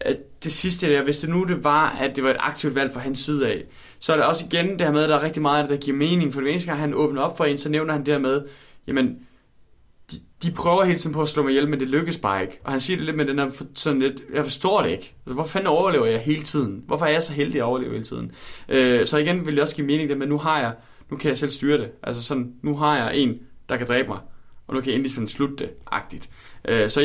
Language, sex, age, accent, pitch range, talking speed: Danish, male, 20-39, native, 125-150 Hz, 295 wpm